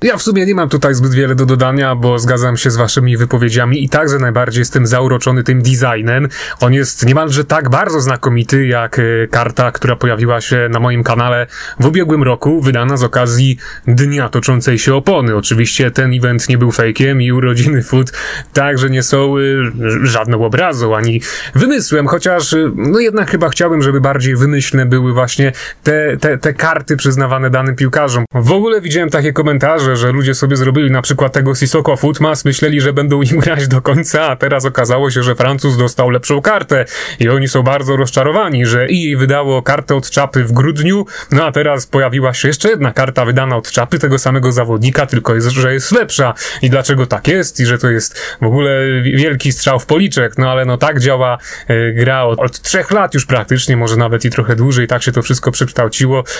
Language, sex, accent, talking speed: Polish, male, native, 190 wpm